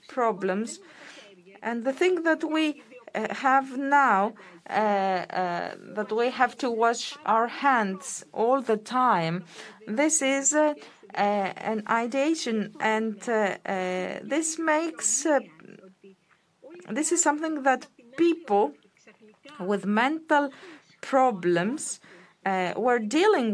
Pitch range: 195-270 Hz